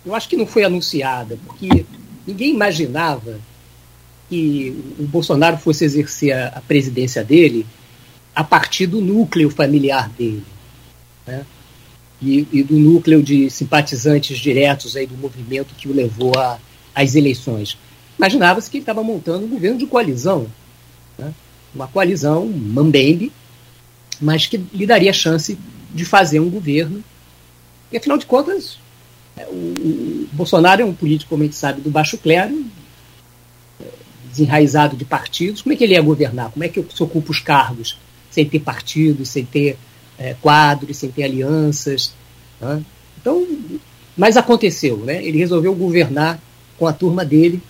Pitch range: 130-175 Hz